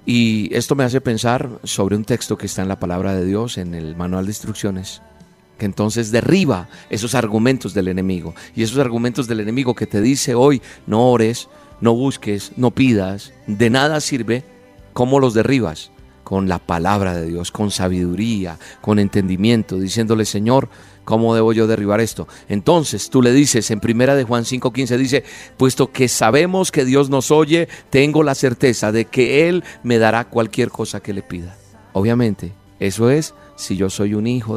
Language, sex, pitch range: Spanish, male, 100-130 Hz